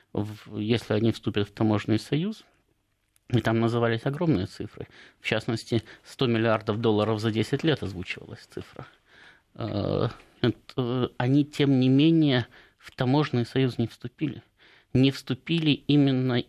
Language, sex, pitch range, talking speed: Russian, male, 110-140 Hz, 120 wpm